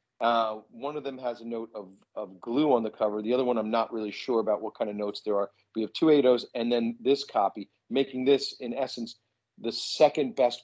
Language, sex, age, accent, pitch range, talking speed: English, male, 40-59, American, 115-140 Hz, 235 wpm